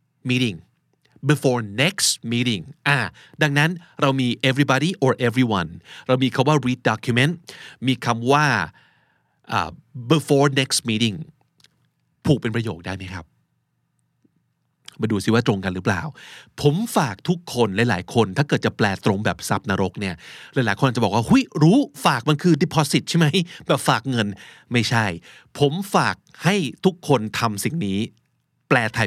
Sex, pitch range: male, 110-150 Hz